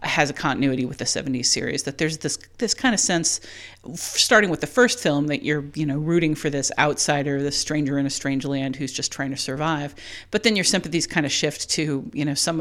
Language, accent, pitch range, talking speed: English, American, 140-165 Hz, 235 wpm